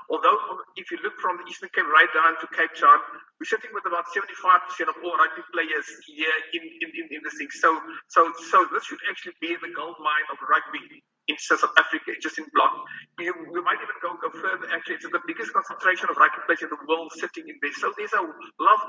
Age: 50-69